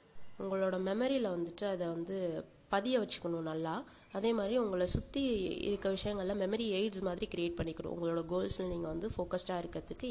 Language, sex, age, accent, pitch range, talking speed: Tamil, female, 20-39, native, 175-215 Hz, 150 wpm